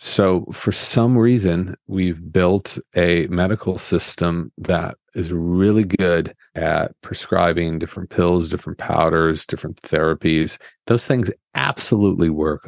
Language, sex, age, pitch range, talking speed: English, male, 40-59, 85-105 Hz, 120 wpm